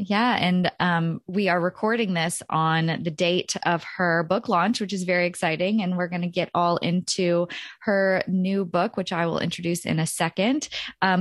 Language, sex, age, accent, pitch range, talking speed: English, female, 20-39, American, 175-220 Hz, 195 wpm